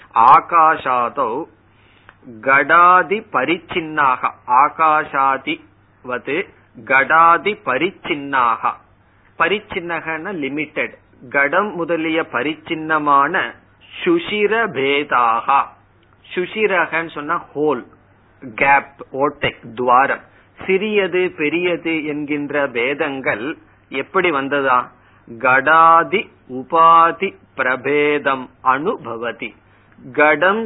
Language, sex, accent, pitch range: Tamil, male, native, 125-170 Hz